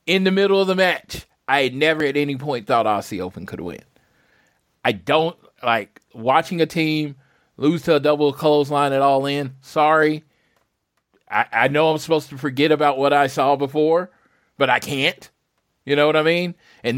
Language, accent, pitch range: English, American, 140-170 Hz